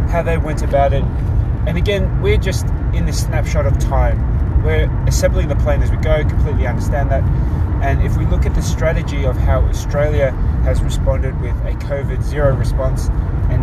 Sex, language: male, English